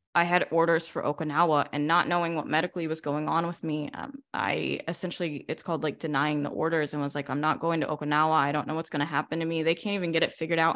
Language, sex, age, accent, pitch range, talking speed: English, female, 10-29, American, 155-180 Hz, 255 wpm